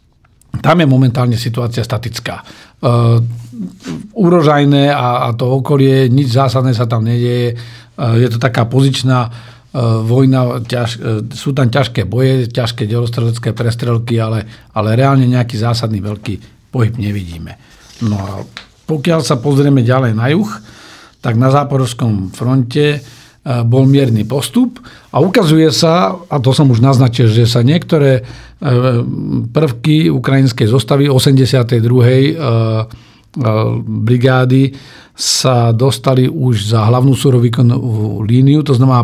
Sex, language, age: male, Slovak, 50-69